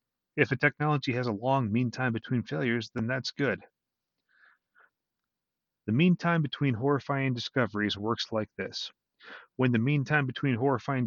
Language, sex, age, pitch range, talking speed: English, male, 30-49, 110-140 Hz, 150 wpm